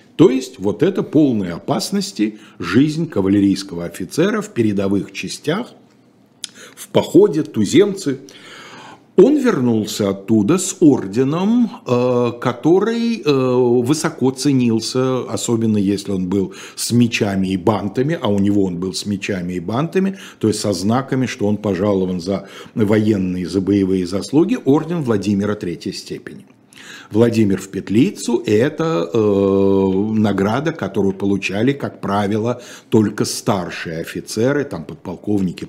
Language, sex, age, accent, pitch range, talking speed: Russian, male, 50-69, native, 95-130 Hz, 120 wpm